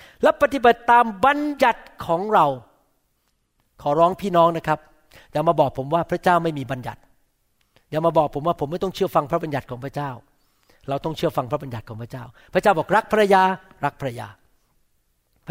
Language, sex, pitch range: Thai, male, 135-200 Hz